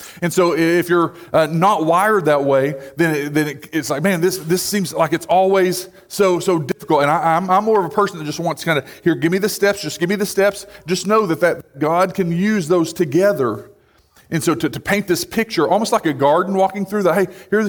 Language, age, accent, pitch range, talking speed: English, 40-59, American, 150-190 Hz, 250 wpm